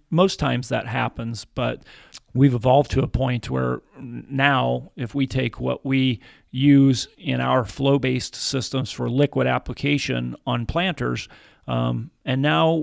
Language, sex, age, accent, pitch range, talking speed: English, male, 40-59, American, 105-130 Hz, 140 wpm